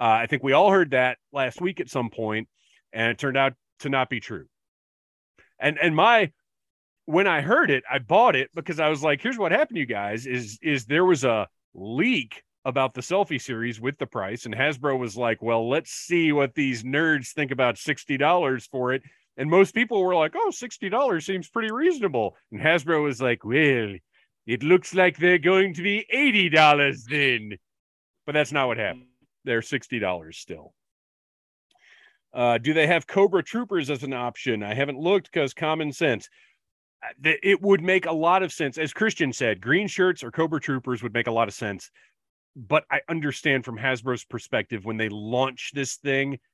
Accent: American